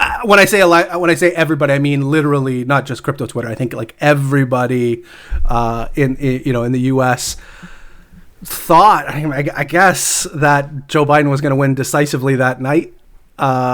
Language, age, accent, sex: English, 30-49, American, male